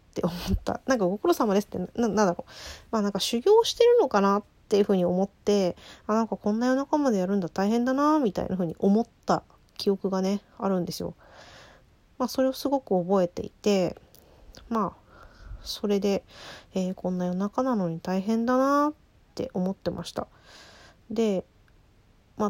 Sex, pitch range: female, 190-245 Hz